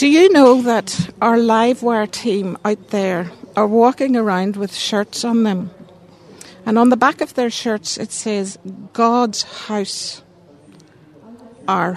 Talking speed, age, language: 140 wpm, 60-79, English